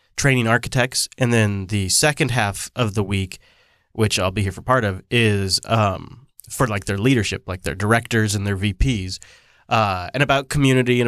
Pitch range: 105-130 Hz